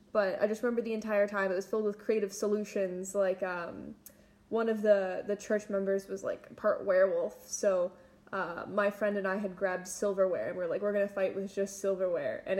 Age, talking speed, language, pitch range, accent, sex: 10-29, 215 wpm, English, 190-220 Hz, American, female